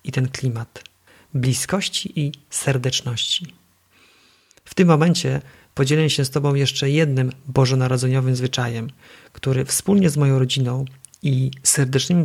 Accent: native